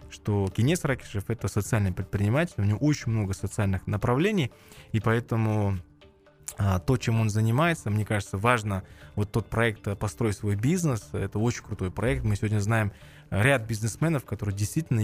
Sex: male